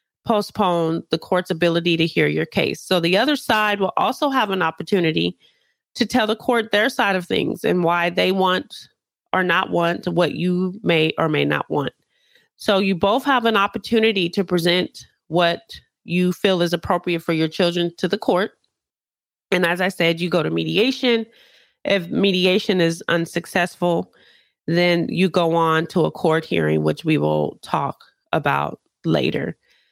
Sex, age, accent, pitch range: female, 30-49, American, 170-210 Hz